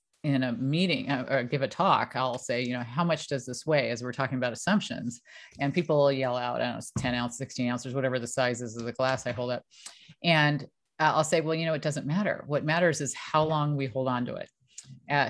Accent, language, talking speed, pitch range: American, English, 245 wpm, 130-180 Hz